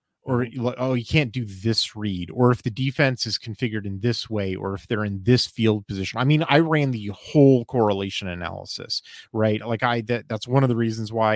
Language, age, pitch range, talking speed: English, 30-49, 105-140 Hz, 215 wpm